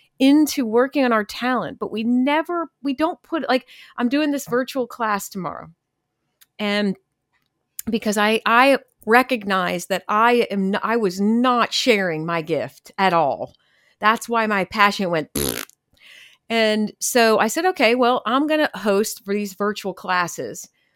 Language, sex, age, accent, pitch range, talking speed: English, female, 40-59, American, 195-245 Hz, 155 wpm